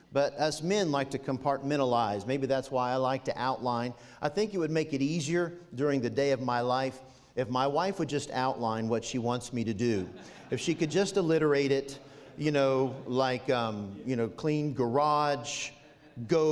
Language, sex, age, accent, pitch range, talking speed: English, male, 50-69, American, 135-180 Hz, 195 wpm